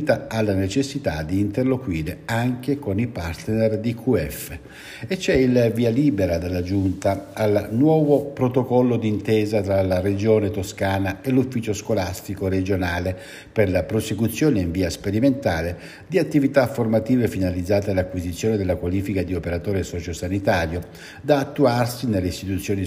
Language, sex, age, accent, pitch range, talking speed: Italian, male, 60-79, native, 90-125 Hz, 130 wpm